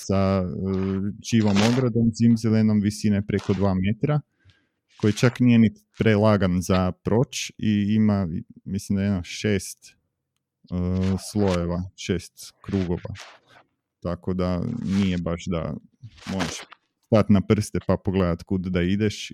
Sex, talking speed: male, 130 wpm